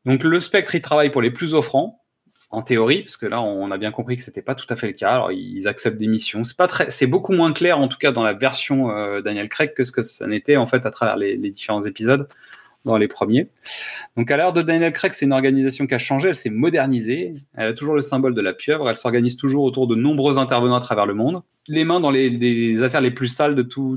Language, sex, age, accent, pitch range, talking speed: French, male, 30-49, French, 120-155 Hz, 270 wpm